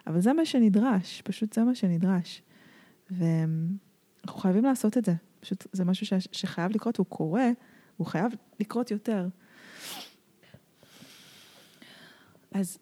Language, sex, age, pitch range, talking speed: Hebrew, female, 20-39, 175-210 Hz, 115 wpm